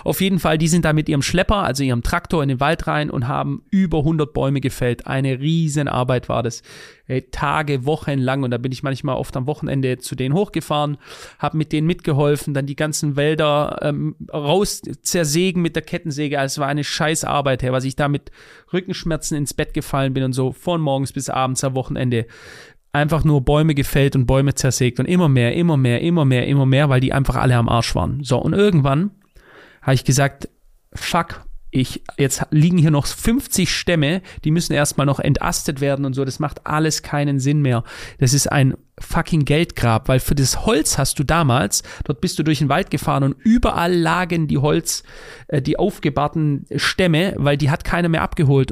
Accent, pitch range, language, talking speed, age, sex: German, 135-160 Hz, German, 200 wpm, 30-49, male